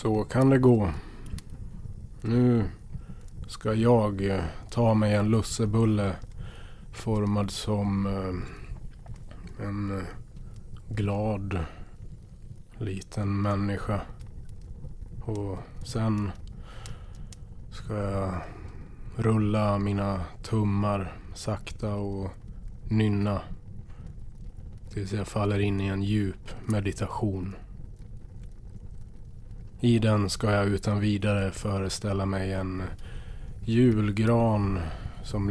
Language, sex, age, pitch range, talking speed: Swedish, male, 20-39, 100-110 Hz, 80 wpm